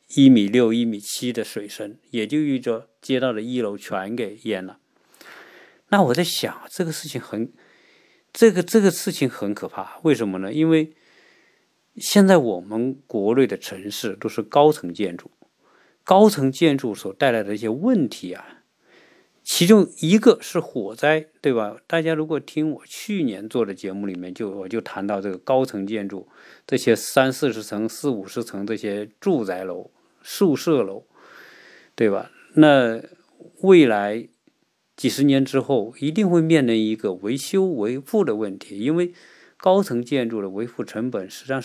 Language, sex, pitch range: Chinese, male, 105-155 Hz